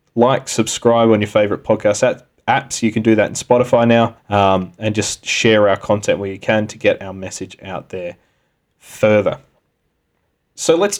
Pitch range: 105-120 Hz